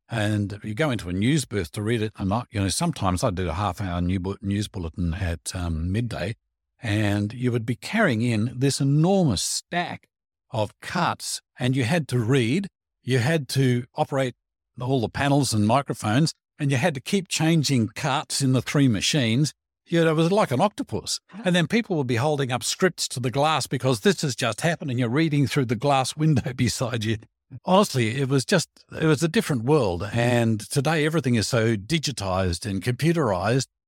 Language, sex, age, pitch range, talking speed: English, male, 50-69, 105-145 Hz, 195 wpm